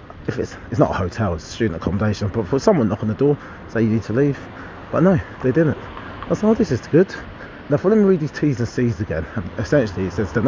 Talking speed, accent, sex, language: 270 wpm, British, male, English